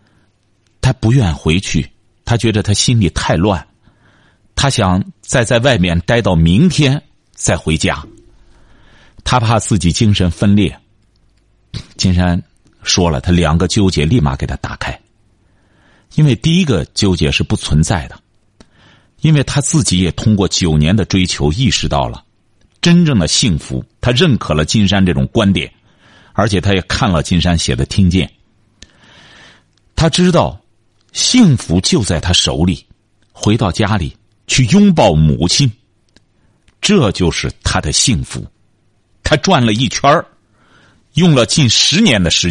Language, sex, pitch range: Chinese, male, 90-130 Hz